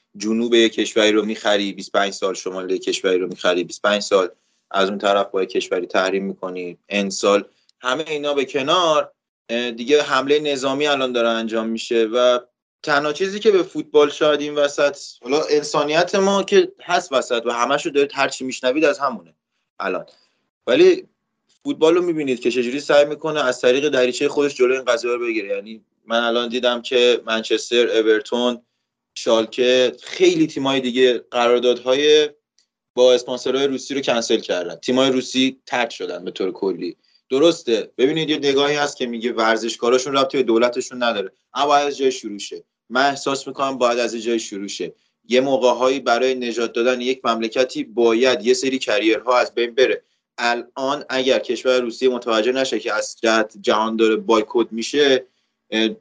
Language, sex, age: Persian, male, 20-39